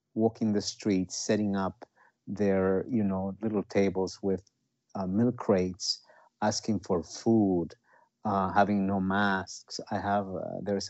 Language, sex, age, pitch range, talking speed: English, male, 50-69, 95-105 Hz, 140 wpm